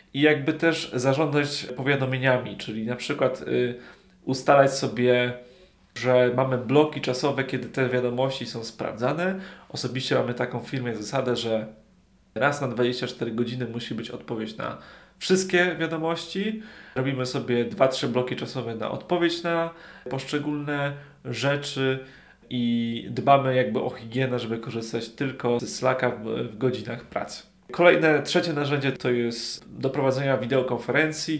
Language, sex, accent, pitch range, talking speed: Polish, male, native, 120-145 Hz, 130 wpm